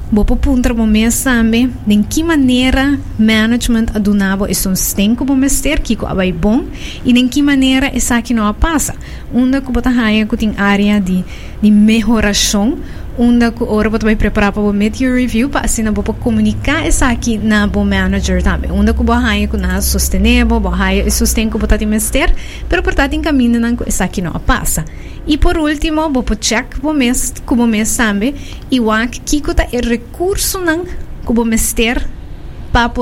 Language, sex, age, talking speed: Dutch, female, 20-39, 155 wpm